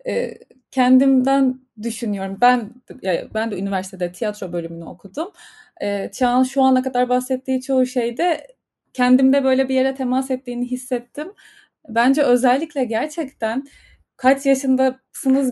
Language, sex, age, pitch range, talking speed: Turkish, female, 30-49, 230-275 Hz, 110 wpm